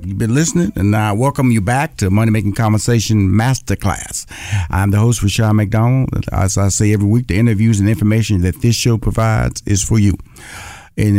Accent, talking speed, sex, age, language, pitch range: American, 190 wpm, male, 50-69, English, 105-135 Hz